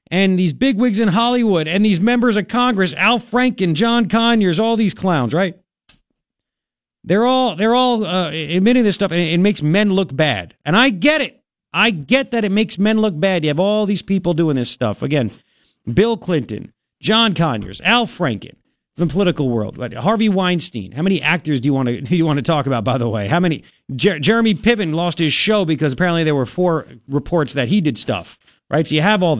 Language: English